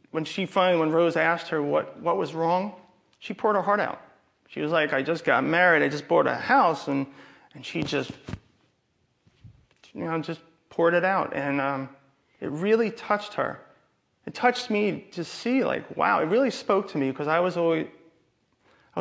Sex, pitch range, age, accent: male, 150-185 Hz, 30-49, American